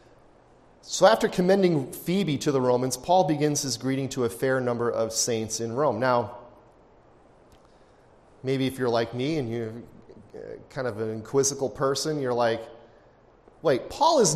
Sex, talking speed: male, 155 wpm